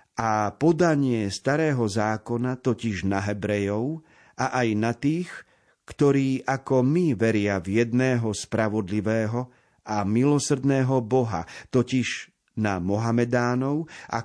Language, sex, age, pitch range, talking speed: Slovak, male, 50-69, 105-140 Hz, 105 wpm